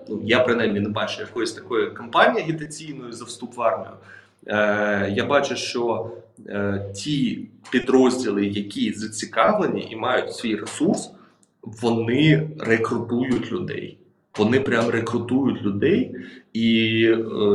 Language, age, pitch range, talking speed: Ukrainian, 30-49, 105-135 Hz, 120 wpm